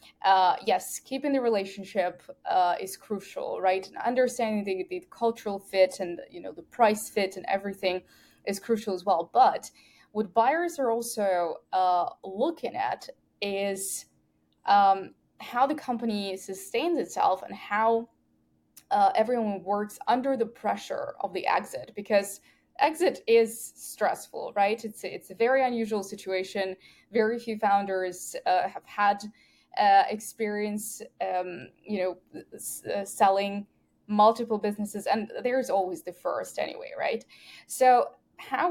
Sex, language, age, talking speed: female, English, 10-29, 135 wpm